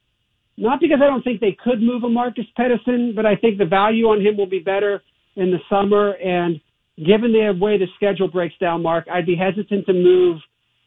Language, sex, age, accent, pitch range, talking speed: English, male, 50-69, American, 155-200 Hz, 210 wpm